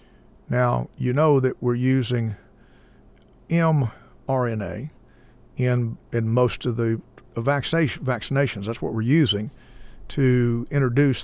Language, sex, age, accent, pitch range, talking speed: English, male, 50-69, American, 115-140 Hz, 105 wpm